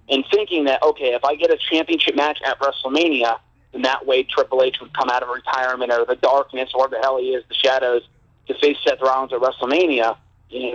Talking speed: 220 wpm